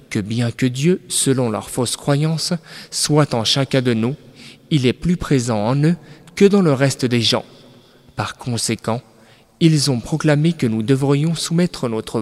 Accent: French